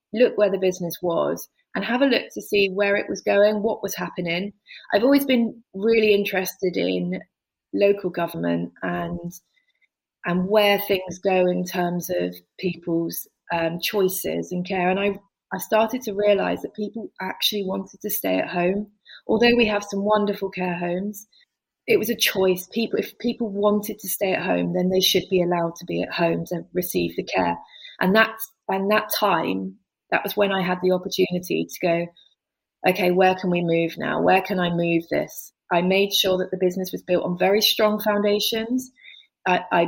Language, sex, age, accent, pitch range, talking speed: English, female, 30-49, British, 170-205 Hz, 185 wpm